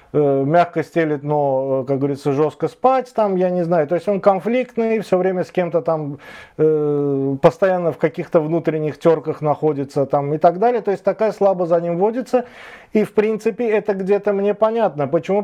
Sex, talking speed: male, 180 wpm